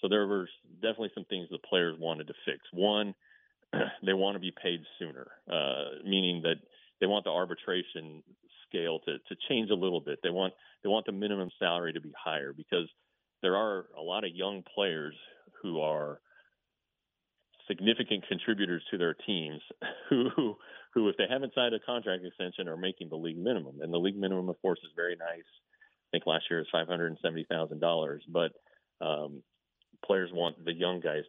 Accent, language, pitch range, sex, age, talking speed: American, English, 80-100 Hz, male, 40-59, 180 wpm